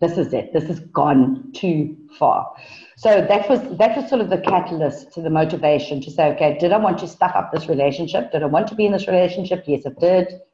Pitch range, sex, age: 155-235 Hz, female, 50-69